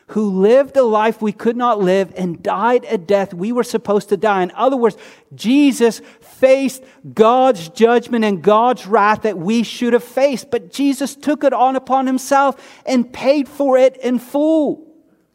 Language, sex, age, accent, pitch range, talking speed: English, male, 40-59, American, 185-260 Hz, 175 wpm